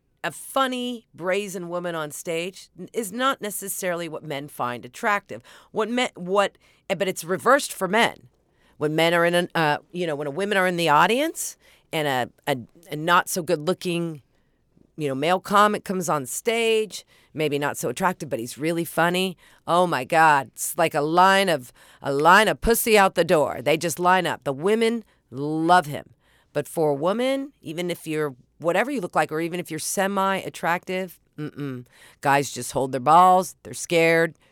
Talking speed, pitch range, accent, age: 185 wpm, 145-190 Hz, American, 40-59